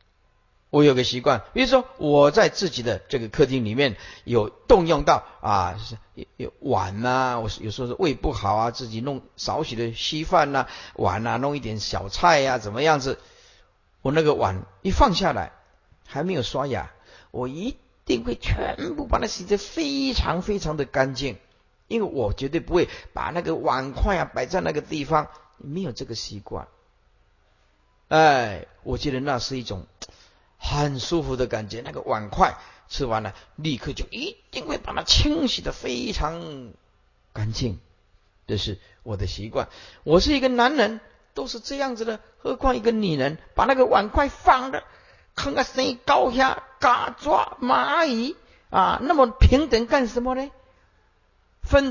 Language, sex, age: Chinese, male, 50-69